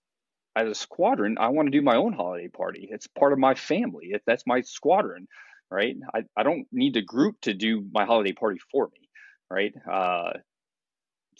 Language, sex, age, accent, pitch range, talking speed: English, male, 30-49, American, 100-125 Hz, 185 wpm